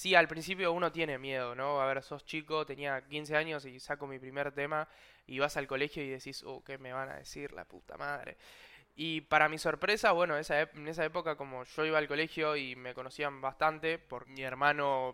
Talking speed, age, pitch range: 215 wpm, 10-29, 135-165 Hz